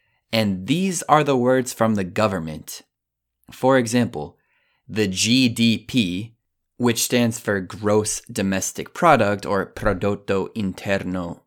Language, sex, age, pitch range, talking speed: Italian, male, 20-39, 90-110 Hz, 110 wpm